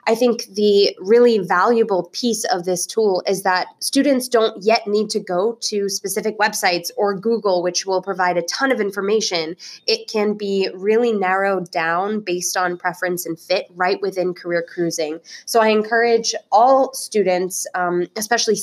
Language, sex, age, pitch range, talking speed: English, female, 20-39, 180-220 Hz, 165 wpm